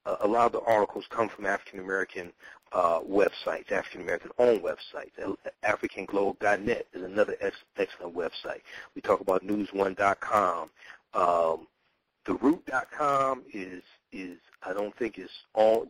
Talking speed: 135 wpm